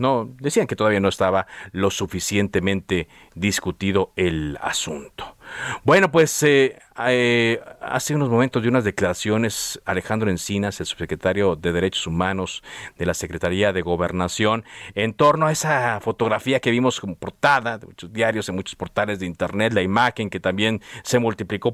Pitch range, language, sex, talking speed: 95-145 Hz, Spanish, male, 150 wpm